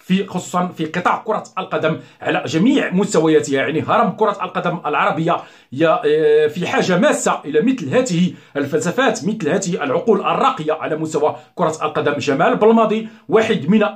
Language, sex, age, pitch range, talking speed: Arabic, male, 40-59, 155-210 Hz, 140 wpm